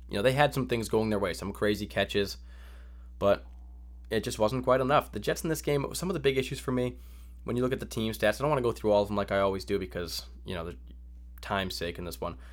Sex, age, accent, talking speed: male, 20-39, American, 285 wpm